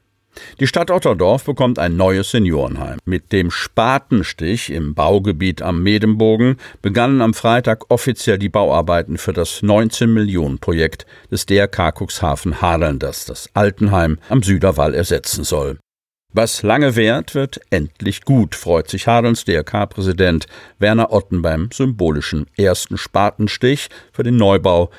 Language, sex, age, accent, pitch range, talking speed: German, male, 50-69, German, 90-120 Hz, 125 wpm